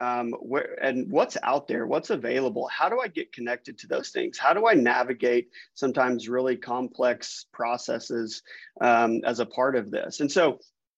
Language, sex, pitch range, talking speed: English, male, 120-145 Hz, 175 wpm